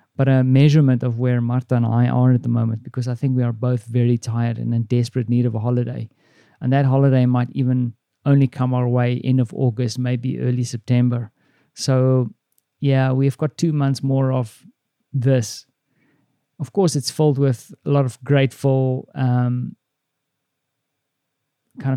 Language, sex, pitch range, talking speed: English, male, 125-140 Hz, 170 wpm